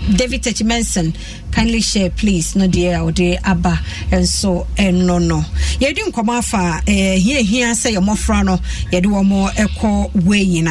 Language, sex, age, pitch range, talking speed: English, female, 50-69, 165-205 Hz, 205 wpm